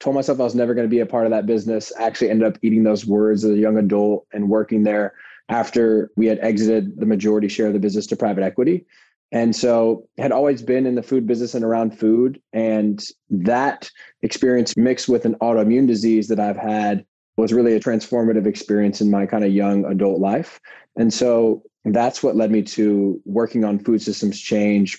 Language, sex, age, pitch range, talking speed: English, male, 20-39, 105-115 Hz, 205 wpm